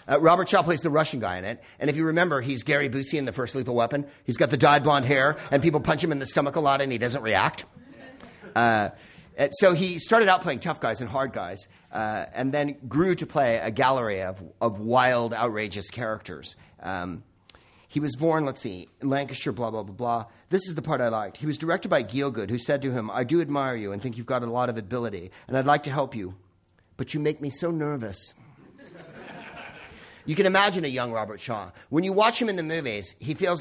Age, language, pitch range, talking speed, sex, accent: 40-59, English, 120-165 Hz, 235 wpm, male, American